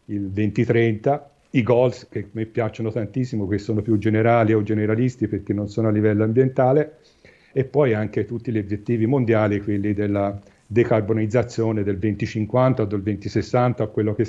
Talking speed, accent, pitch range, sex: 160 wpm, native, 105-130 Hz, male